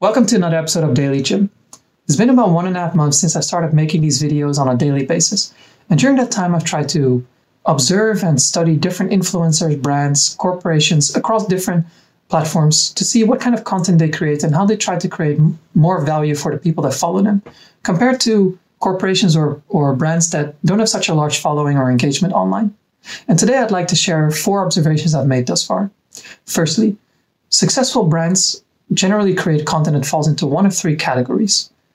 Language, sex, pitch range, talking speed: English, male, 155-195 Hz, 195 wpm